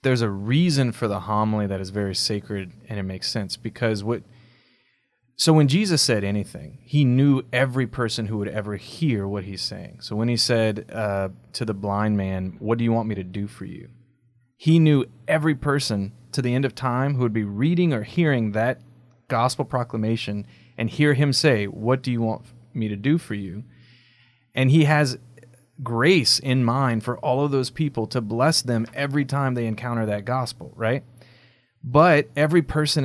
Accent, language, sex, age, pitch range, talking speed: American, English, male, 30-49, 110-140 Hz, 190 wpm